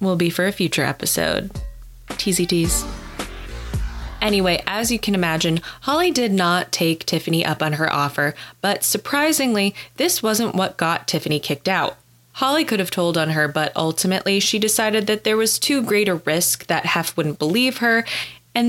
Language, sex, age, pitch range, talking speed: English, female, 20-39, 165-220 Hz, 170 wpm